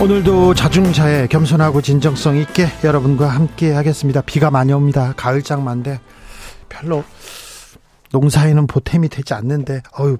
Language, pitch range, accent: Korean, 135-175 Hz, native